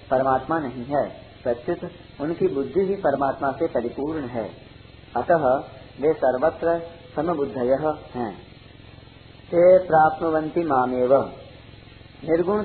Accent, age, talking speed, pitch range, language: native, 40-59, 85 wpm, 125-165 Hz, Hindi